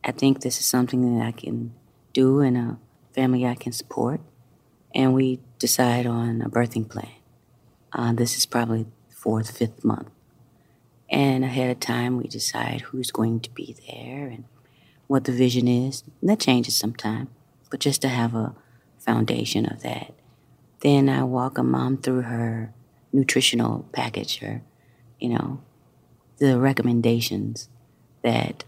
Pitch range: 115-130 Hz